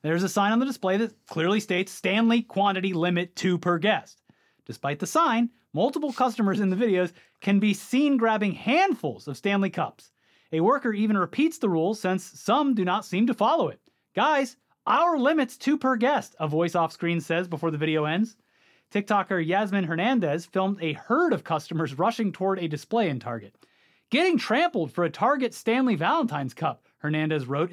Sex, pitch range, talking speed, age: male, 165-220 Hz, 180 wpm, 30-49